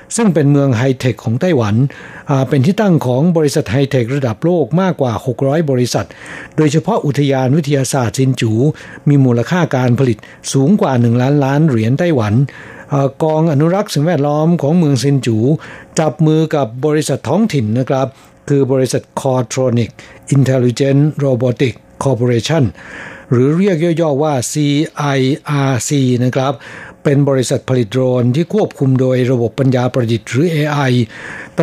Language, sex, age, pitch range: Thai, male, 60-79, 130-155 Hz